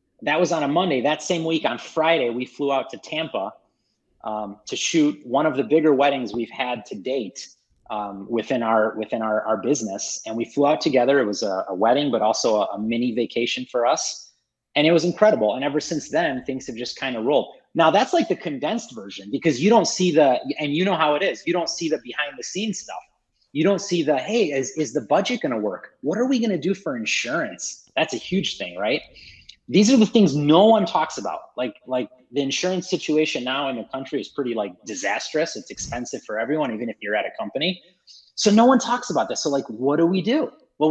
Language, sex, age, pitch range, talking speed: English, male, 30-49, 135-190 Hz, 235 wpm